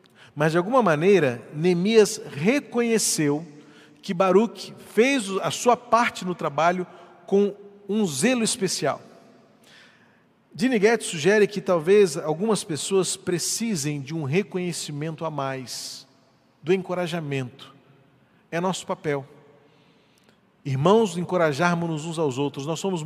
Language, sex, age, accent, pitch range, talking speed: Portuguese, male, 40-59, Brazilian, 155-200 Hz, 110 wpm